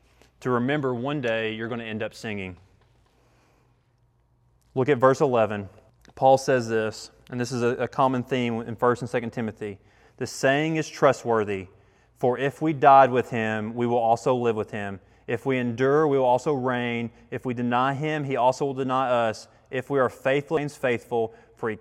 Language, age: English, 20-39